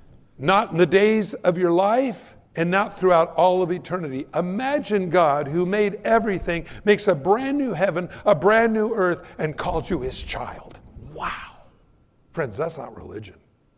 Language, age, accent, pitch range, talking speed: English, 60-79, American, 145-200 Hz, 160 wpm